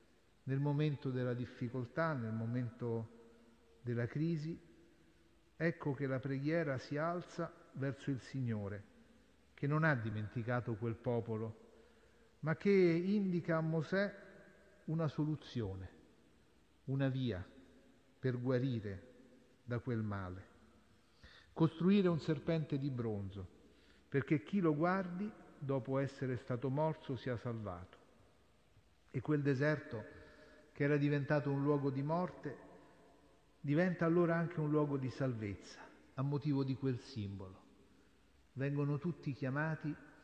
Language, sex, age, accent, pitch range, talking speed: Italian, male, 50-69, native, 120-155 Hz, 115 wpm